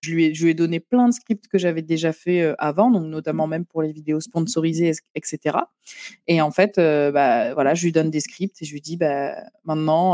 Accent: French